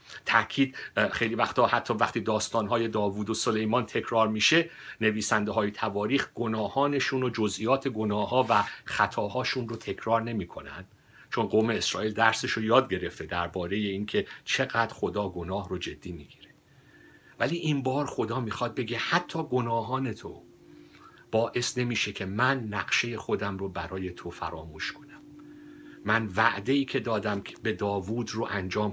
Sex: male